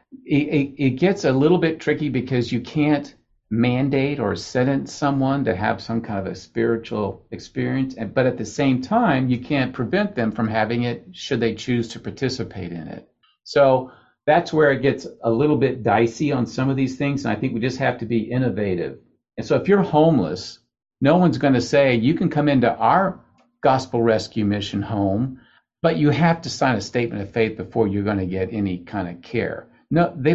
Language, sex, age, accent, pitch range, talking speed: English, male, 50-69, American, 110-135 Hz, 205 wpm